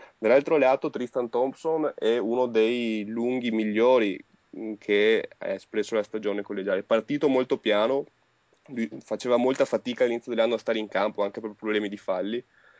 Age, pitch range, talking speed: 30-49, 105-130 Hz, 155 wpm